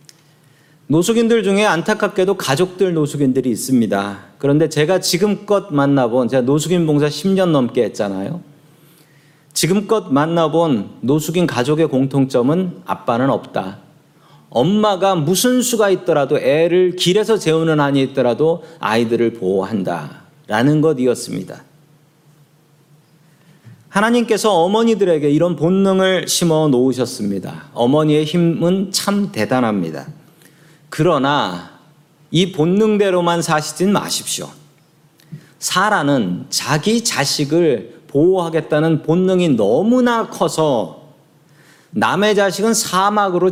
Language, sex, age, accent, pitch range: Korean, male, 40-59, native, 150-190 Hz